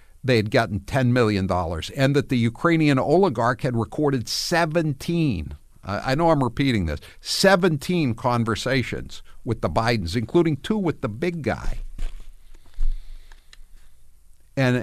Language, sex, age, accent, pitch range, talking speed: English, male, 60-79, American, 90-135 Hz, 115 wpm